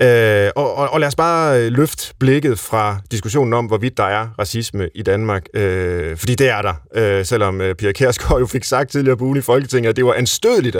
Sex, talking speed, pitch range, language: male, 200 wpm, 105-135 Hz, Danish